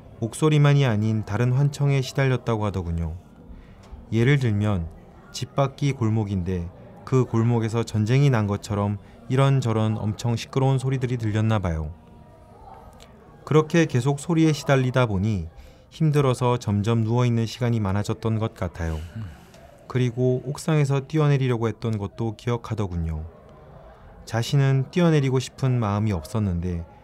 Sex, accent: male, native